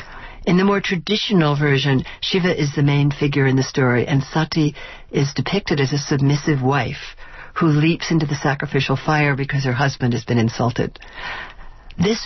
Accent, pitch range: American, 135-170 Hz